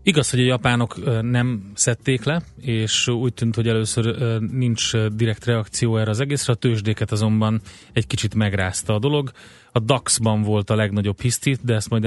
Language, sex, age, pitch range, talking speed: Hungarian, male, 30-49, 105-120 Hz, 175 wpm